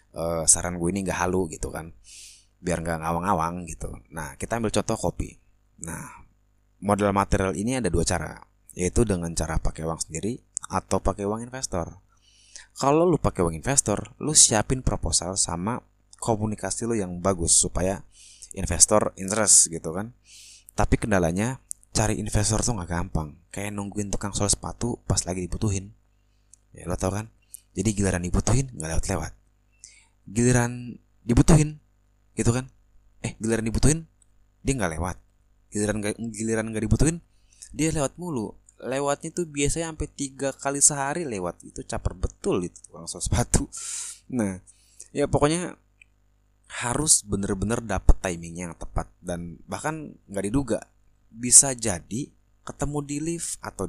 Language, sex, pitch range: Indonesian, male, 95-120 Hz